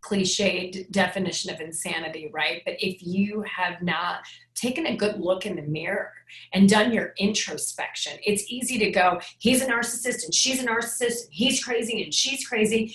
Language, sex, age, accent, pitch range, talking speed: English, female, 30-49, American, 195-260 Hz, 170 wpm